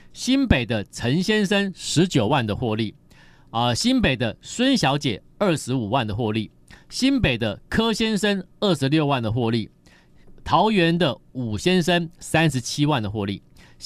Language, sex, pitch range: Chinese, male, 105-170 Hz